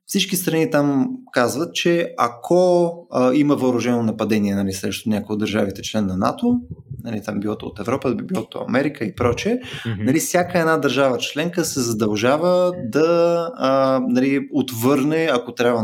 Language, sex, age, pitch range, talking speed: Bulgarian, male, 20-39, 115-165 Hz, 150 wpm